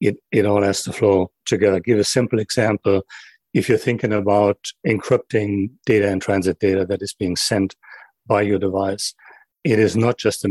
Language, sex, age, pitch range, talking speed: English, male, 40-59, 95-105 Hz, 185 wpm